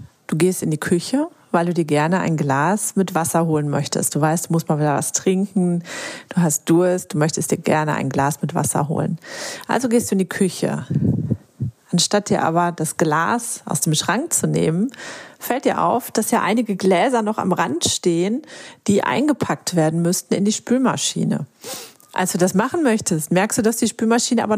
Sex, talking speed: female, 195 wpm